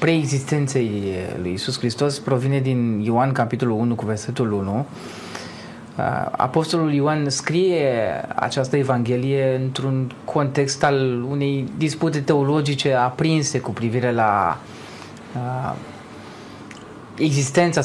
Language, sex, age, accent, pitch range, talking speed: Romanian, male, 20-39, native, 125-160 Hz, 95 wpm